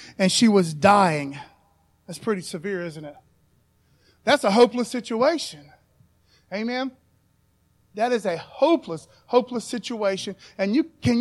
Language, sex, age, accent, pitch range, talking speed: English, male, 40-59, American, 195-270 Hz, 125 wpm